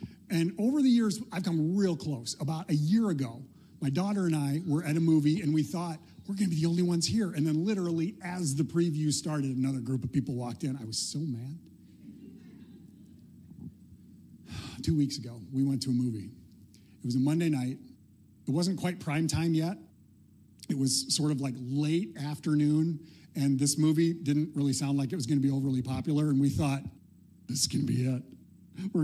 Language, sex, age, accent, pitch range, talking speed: English, male, 40-59, American, 135-170 Hz, 205 wpm